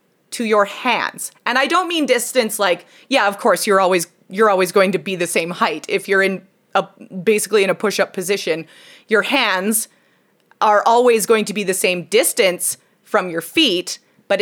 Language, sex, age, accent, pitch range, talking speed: English, female, 30-49, American, 185-245 Hz, 185 wpm